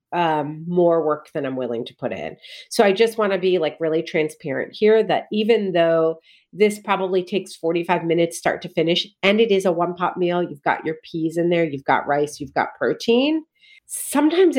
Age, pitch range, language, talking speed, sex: 40-59, 150-190 Hz, English, 205 wpm, female